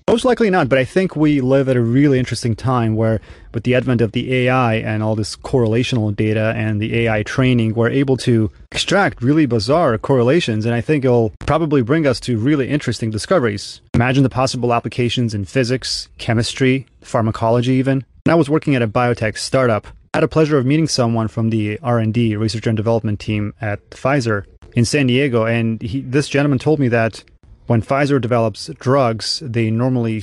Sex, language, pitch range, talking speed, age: male, English, 110-135 Hz, 190 wpm, 30-49